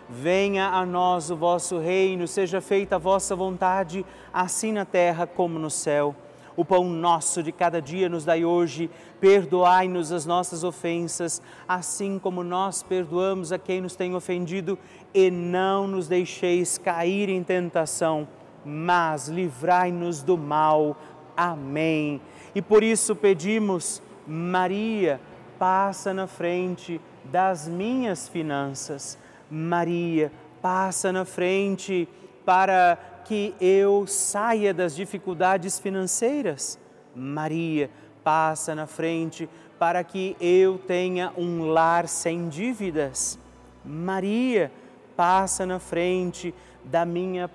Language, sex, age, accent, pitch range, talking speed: Portuguese, male, 40-59, Brazilian, 165-185 Hz, 115 wpm